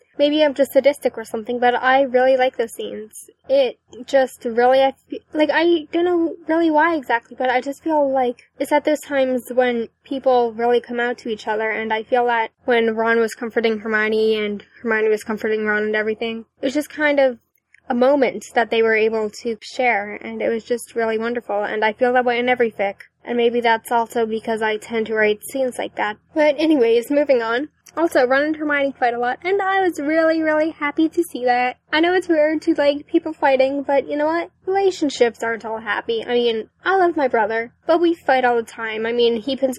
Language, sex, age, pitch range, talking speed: English, female, 10-29, 225-280 Hz, 220 wpm